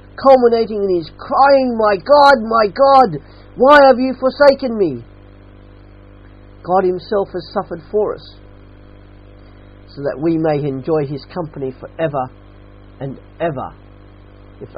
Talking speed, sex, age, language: 120 wpm, male, 40-59, English